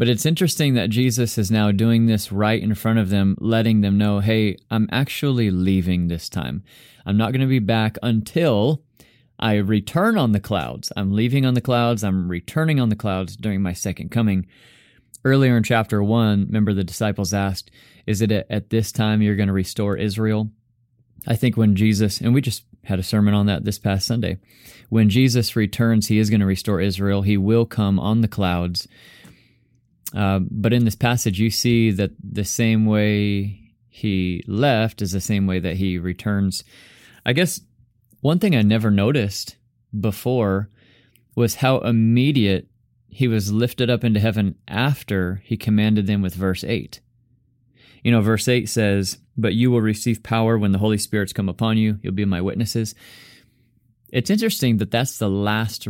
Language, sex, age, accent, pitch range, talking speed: English, male, 30-49, American, 100-120 Hz, 180 wpm